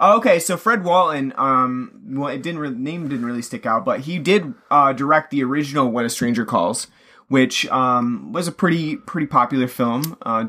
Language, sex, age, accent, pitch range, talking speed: English, male, 30-49, American, 125-150 Hz, 205 wpm